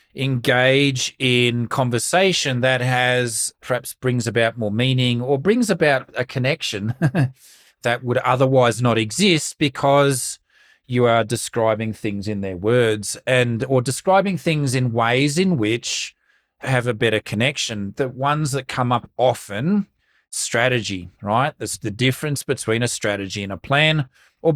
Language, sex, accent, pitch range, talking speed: English, male, Australian, 115-145 Hz, 140 wpm